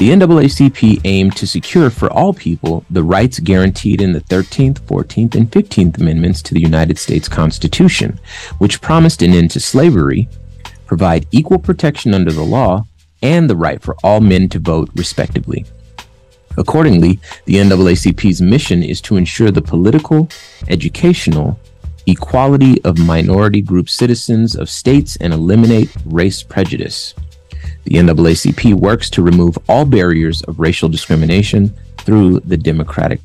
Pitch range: 80-115 Hz